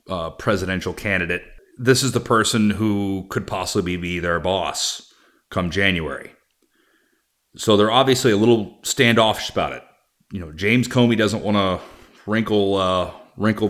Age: 30-49